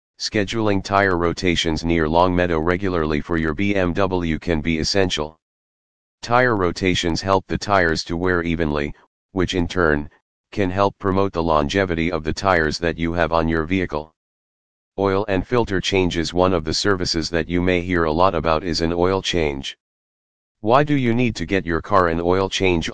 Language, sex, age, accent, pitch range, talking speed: English, male, 40-59, American, 80-95 Hz, 180 wpm